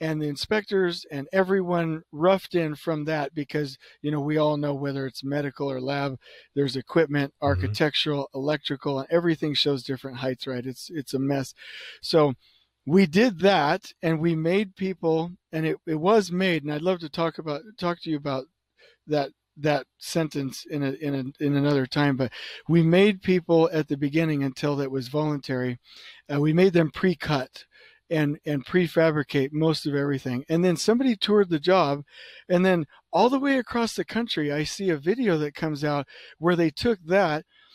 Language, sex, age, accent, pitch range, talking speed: English, male, 40-59, American, 145-180 Hz, 180 wpm